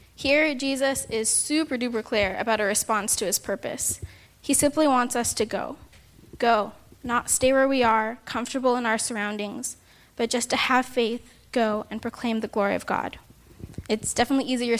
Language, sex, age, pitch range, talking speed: English, female, 10-29, 220-255 Hz, 170 wpm